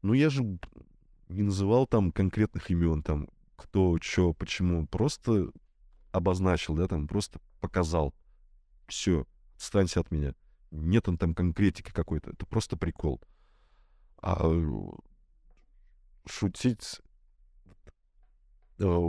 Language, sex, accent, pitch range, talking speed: Russian, male, native, 80-105 Hz, 100 wpm